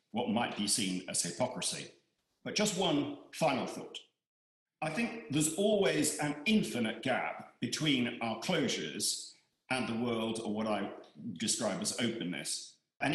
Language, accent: English, British